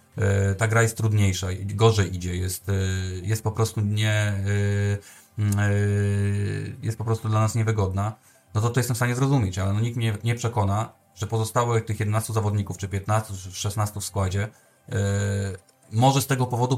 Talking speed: 155 wpm